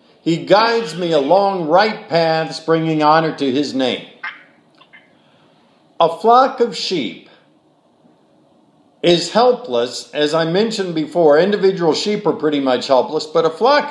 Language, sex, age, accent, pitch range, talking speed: English, male, 50-69, American, 160-200 Hz, 130 wpm